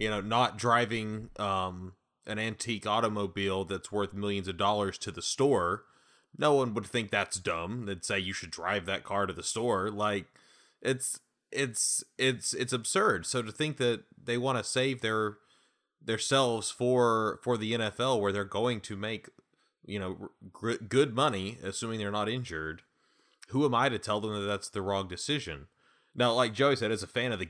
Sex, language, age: male, English, 30-49